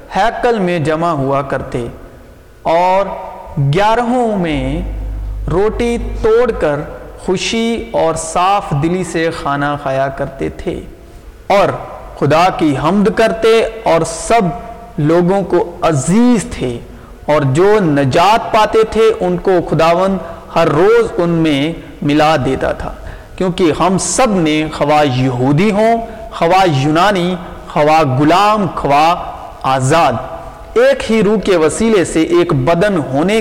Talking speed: 120 wpm